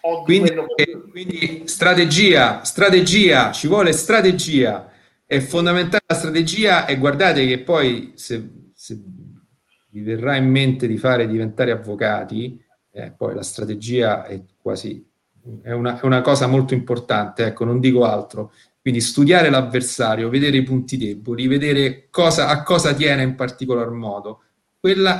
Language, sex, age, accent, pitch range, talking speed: Italian, male, 40-59, native, 115-155 Hz, 140 wpm